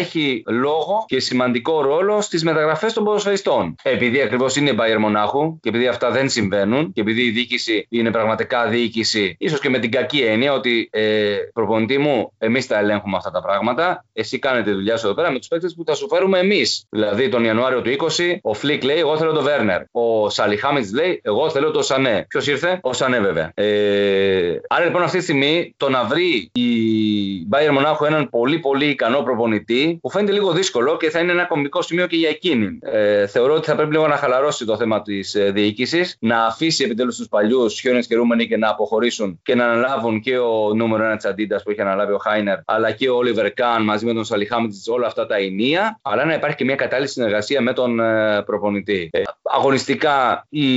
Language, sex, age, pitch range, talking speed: Greek, male, 30-49, 110-155 Hz, 205 wpm